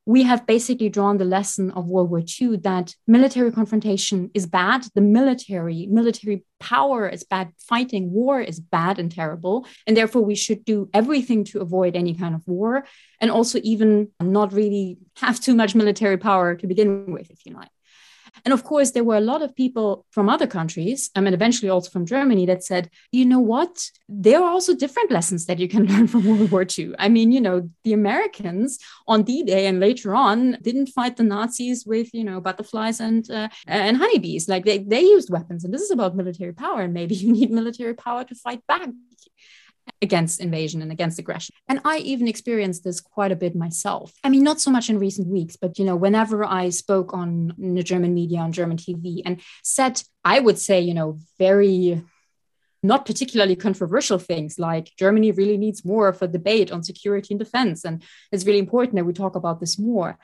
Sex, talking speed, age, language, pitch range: female, 200 wpm, 30-49, English, 180-230 Hz